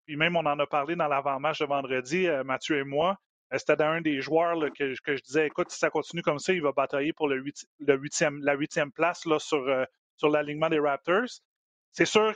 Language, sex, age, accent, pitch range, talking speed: French, male, 30-49, Canadian, 140-170 Hz, 255 wpm